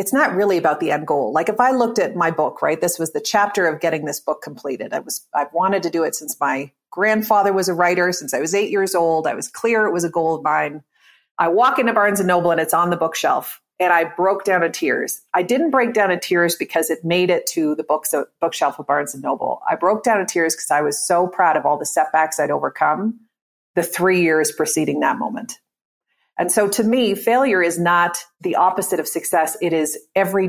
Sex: female